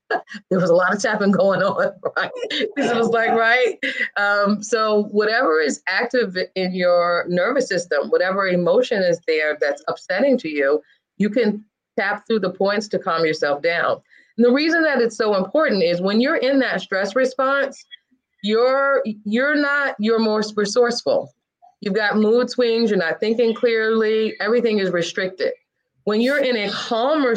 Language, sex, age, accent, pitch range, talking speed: English, female, 30-49, American, 190-250 Hz, 165 wpm